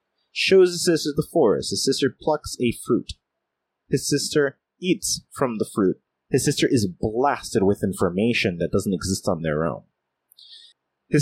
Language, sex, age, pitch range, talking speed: English, male, 30-49, 110-145 Hz, 155 wpm